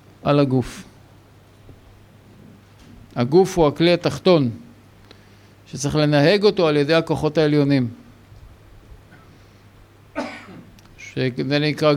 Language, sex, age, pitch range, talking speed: Hebrew, male, 50-69, 105-160 Hz, 70 wpm